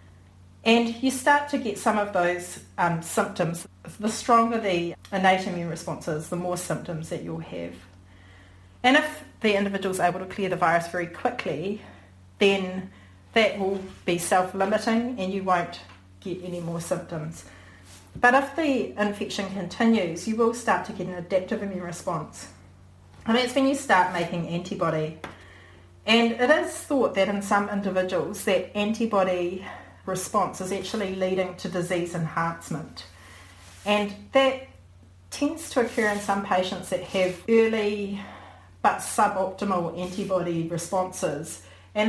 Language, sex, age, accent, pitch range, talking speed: English, female, 40-59, Australian, 170-205 Hz, 145 wpm